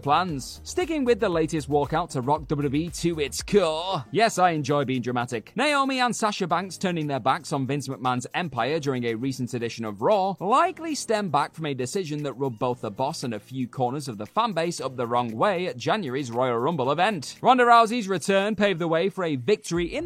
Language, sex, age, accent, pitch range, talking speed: English, male, 30-49, British, 130-210 Hz, 210 wpm